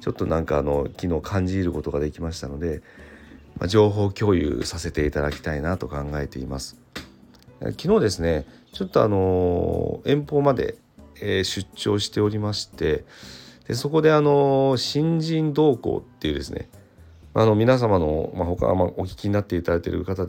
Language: Japanese